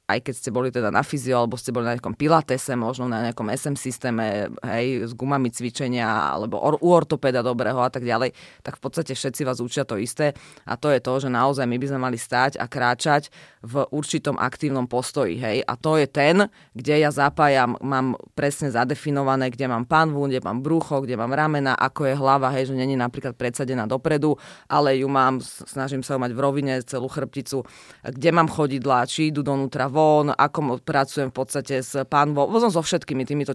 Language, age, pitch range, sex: Slovak, 30-49, 125-150 Hz, female